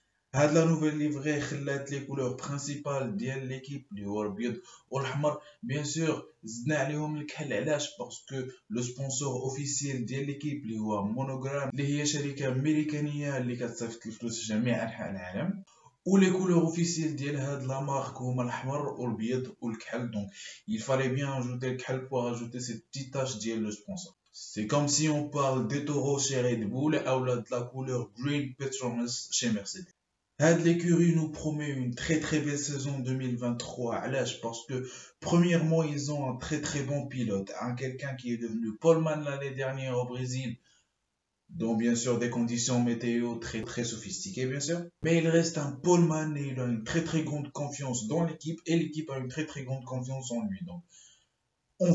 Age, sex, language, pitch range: 20-39, male, French, 125-155 Hz